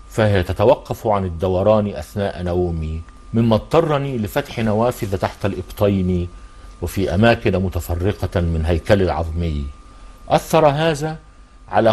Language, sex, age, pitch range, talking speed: Arabic, male, 50-69, 85-110 Hz, 105 wpm